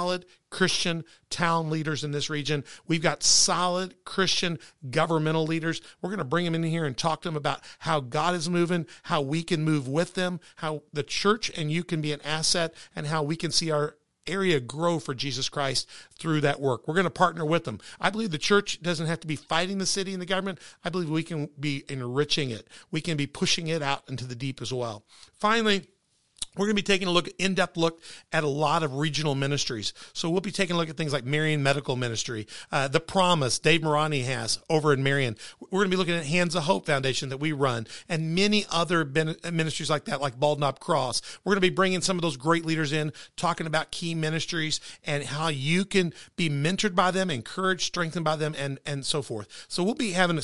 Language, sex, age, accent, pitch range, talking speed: English, male, 50-69, American, 145-175 Hz, 230 wpm